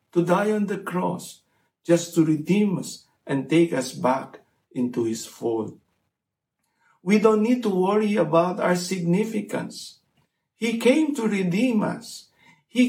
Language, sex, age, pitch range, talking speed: English, male, 50-69, 155-210 Hz, 140 wpm